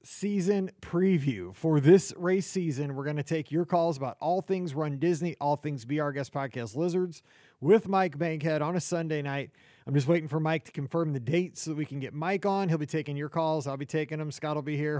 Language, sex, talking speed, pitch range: English, male, 240 wpm, 140-180 Hz